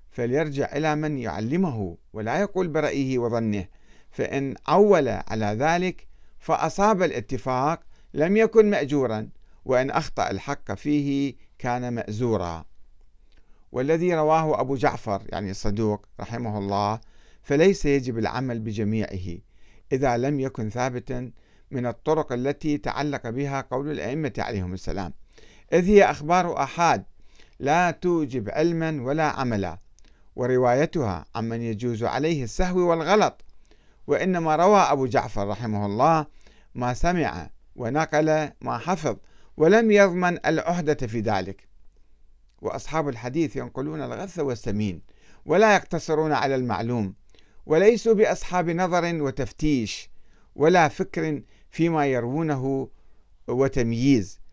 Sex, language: male, Arabic